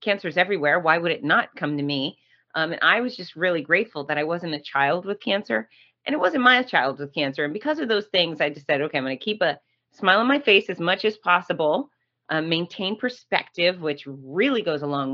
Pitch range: 145-185 Hz